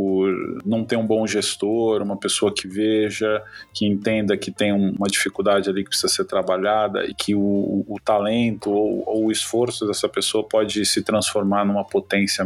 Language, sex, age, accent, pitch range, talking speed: Portuguese, male, 20-39, Brazilian, 100-115 Hz, 180 wpm